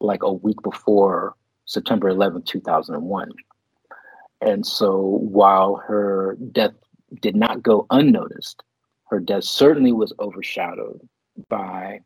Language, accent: English, American